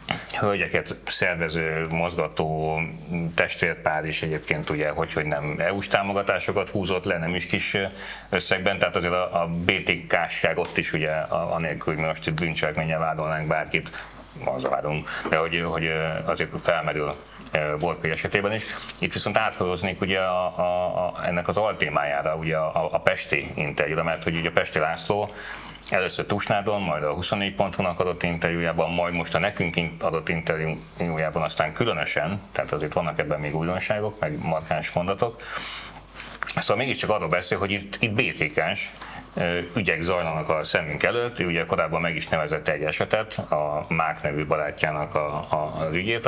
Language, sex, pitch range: Hungarian, male, 80-90 Hz